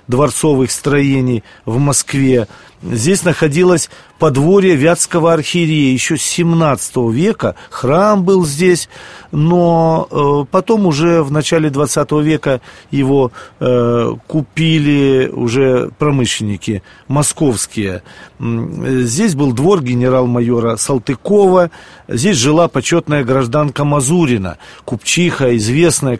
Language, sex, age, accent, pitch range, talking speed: Russian, male, 40-59, native, 120-155 Hz, 90 wpm